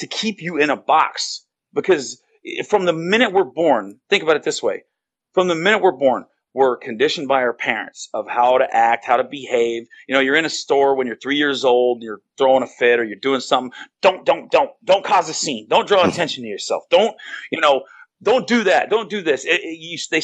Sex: male